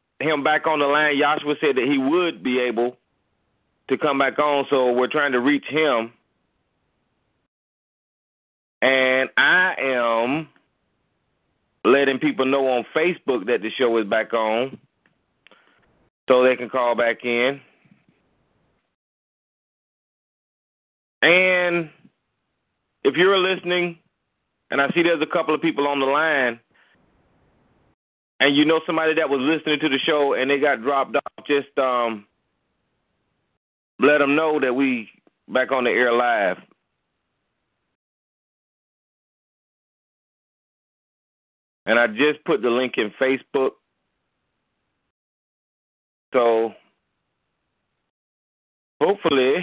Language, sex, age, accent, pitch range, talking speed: English, male, 30-49, American, 120-155 Hz, 115 wpm